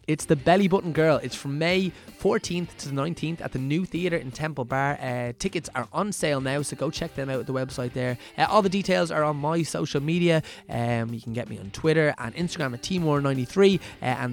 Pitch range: 120-160 Hz